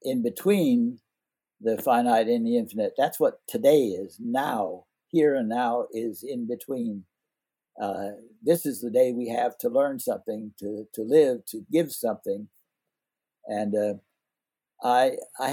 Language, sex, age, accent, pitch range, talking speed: English, male, 60-79, American, 105-160 Hz, 145 wpm